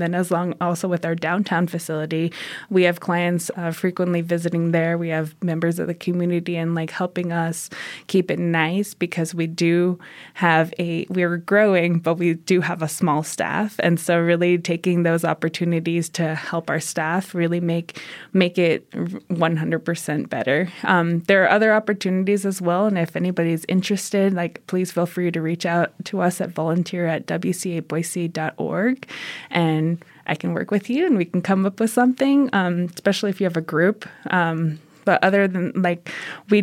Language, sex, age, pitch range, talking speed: English, female, 20-39, 170-190 Hz, 175 wpm